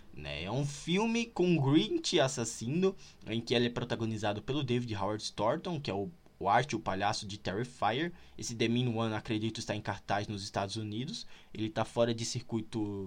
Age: 20-39